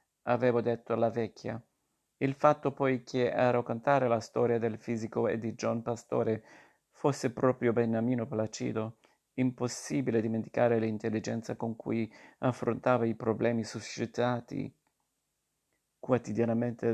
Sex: male